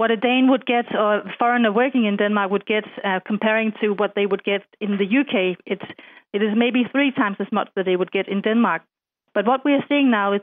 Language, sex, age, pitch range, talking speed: English, female, 30-49, 200-245 Hz, 245 wpm